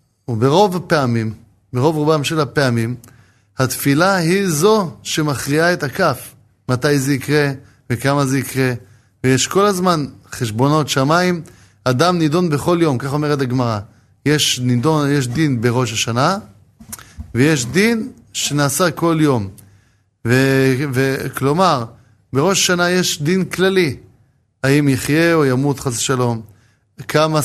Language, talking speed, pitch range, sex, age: Hebrew, 120 wpm, 120-160 Hz, male, 20-39